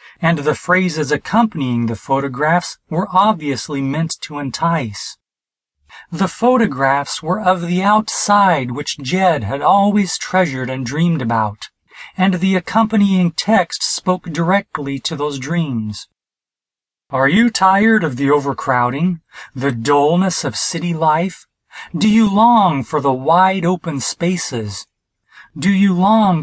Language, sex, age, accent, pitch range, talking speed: English, male, 30-49, American, 135-185 Hz, 125 wpm